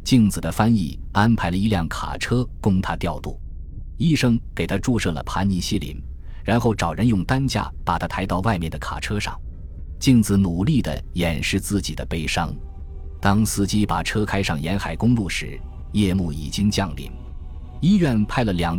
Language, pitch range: Chinese, 80-105 Hz